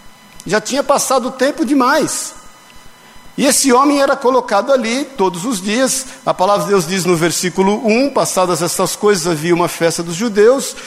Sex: male